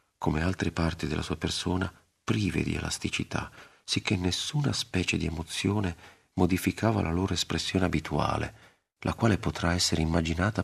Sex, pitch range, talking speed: male, 80-95 Hz, 135 wpm